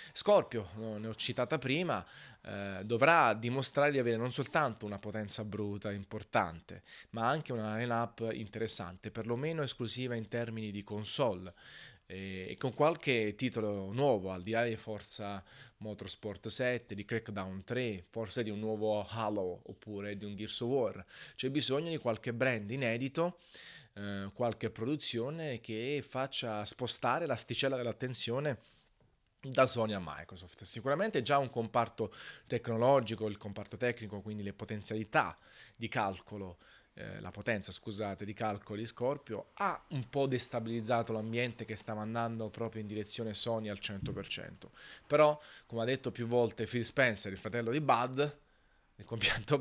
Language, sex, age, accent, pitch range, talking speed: Italian, male, 20-39, native, 105-125 Hz, 145 wpm